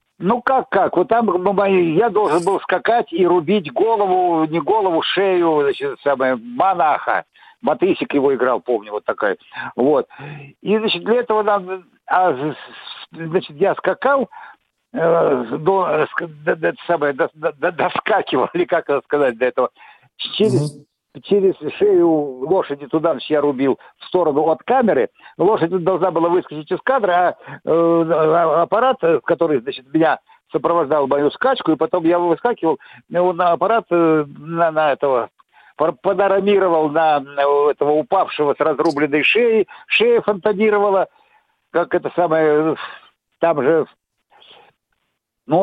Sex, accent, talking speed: male, native, 130 wpm